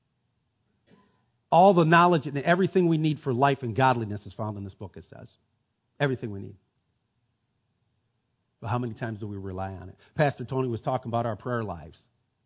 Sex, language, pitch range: male, English, 110-130 Hz